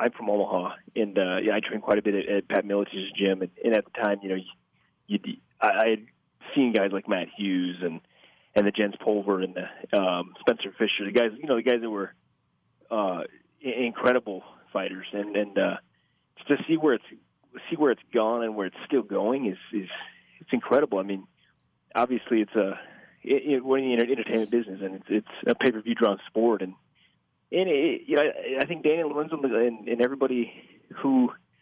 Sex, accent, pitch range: male, American, 100-125 Hz